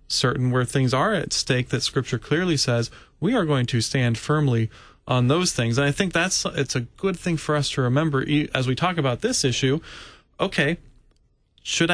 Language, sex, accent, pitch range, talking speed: English, male, American, 125-160 Hz, 195 wpm